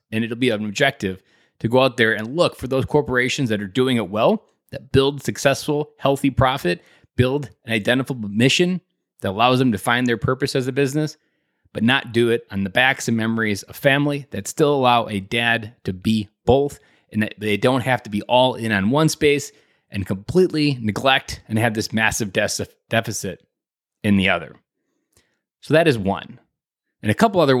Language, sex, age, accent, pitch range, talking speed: English, male, 20-39, American, 110-140 Hz, 190 wpm